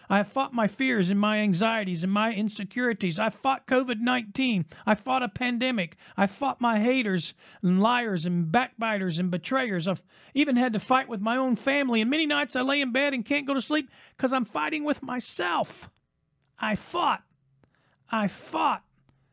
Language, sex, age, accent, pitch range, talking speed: English, male, 40-59, American, 160-215 Hz, 180 wpm